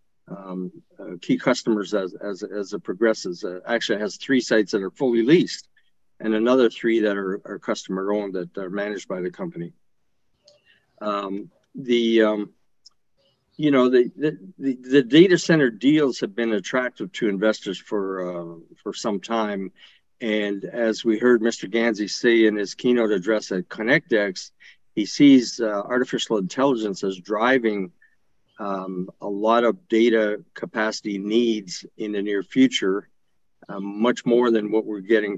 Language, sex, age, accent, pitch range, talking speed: English, male, 50-69, American, 100-125 Hz, 155 wpm